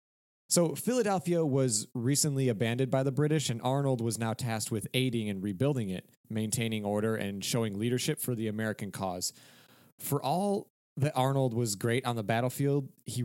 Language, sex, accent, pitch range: English, male, American, 105-130 Hz